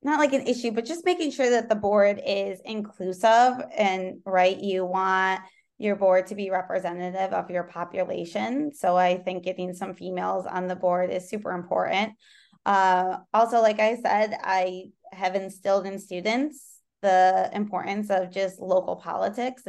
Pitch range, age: 195-235 Hz, 20-39